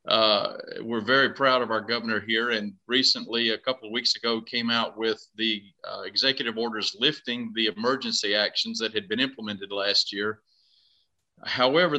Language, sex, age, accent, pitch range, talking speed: English, male, 40-59, American, 110-140 Hz, 165 wpm